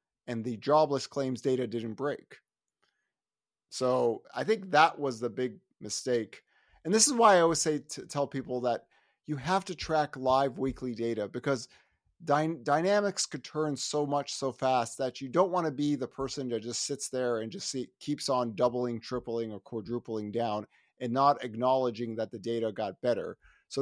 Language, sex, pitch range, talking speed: English, male, 120-150 Hz, 180 wpm